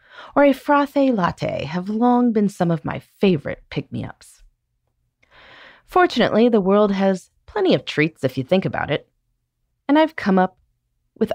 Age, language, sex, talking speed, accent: 30-49, English, female, 155 wpm, American